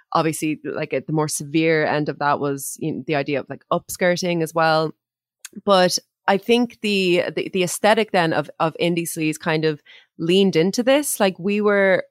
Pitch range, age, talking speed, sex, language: 145-185 Hz, 20-39, 185 wpm, female, English